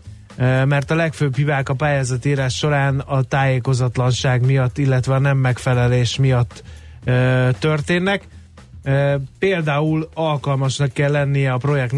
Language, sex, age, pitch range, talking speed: Hungarian, male, 30-49, 125-145 Hz, 110 wpm